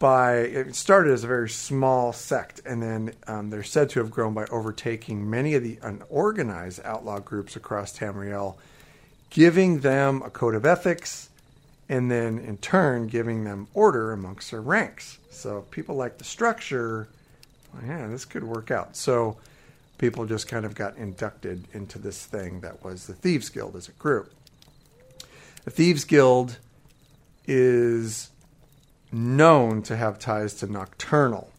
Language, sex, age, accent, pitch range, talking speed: English, male, 50-69, American, 110-145 Hz, 150 wpm